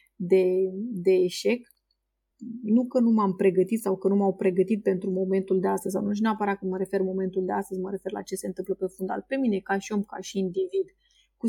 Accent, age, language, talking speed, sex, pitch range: native, 30-49, Romanian, 230 wpm, female, 190-235 Hz